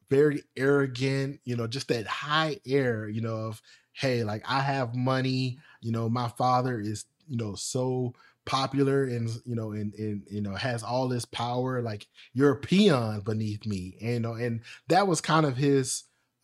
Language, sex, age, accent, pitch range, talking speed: English, male, 20-39, American, 115-140 Hz, 185 wpm